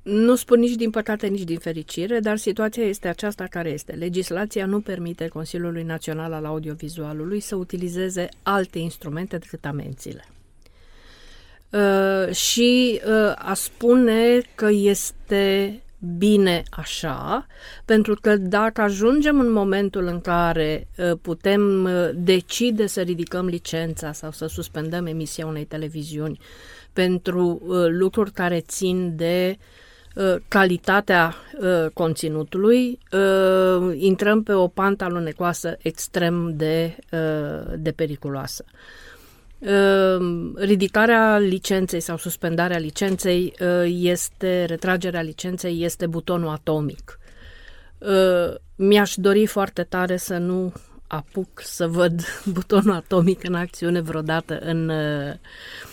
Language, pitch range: Romanian, 165-200 Hz